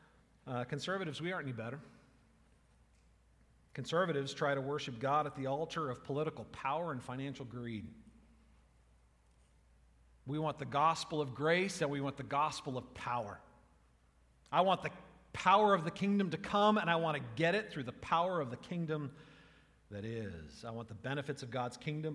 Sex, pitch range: male, 110-160 Hz